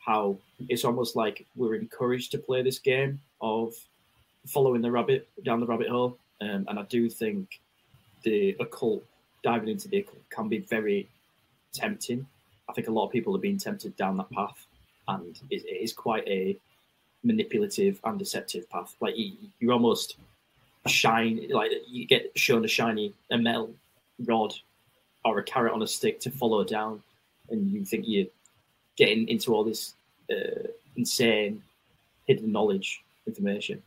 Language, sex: English, male